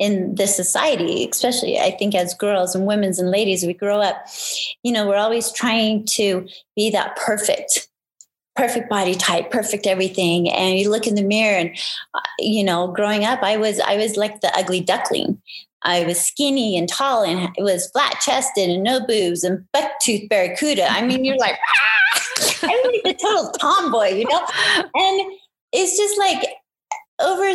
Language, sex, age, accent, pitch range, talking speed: English, female, 30-49, American, 200-295 Hz, 175 wpm